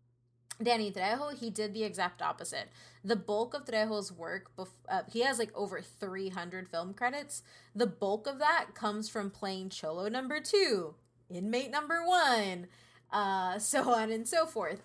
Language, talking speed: English, 160 wpm